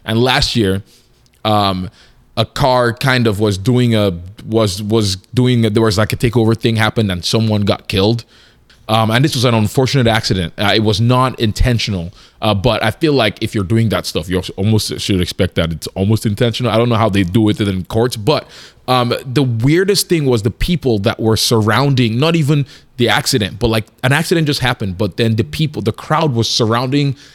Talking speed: 210 wpm